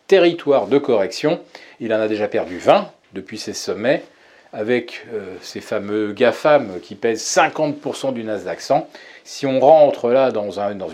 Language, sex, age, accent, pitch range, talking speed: French, male, 40-59, French, 115-165 Hz, 165 wpm